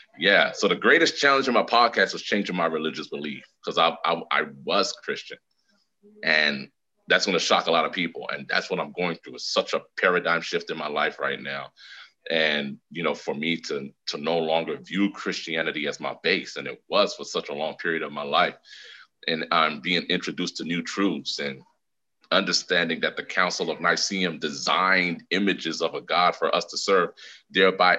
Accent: American